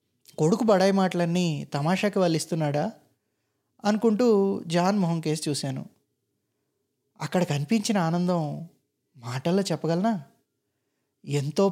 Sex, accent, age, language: male, native, 20-39, Telugu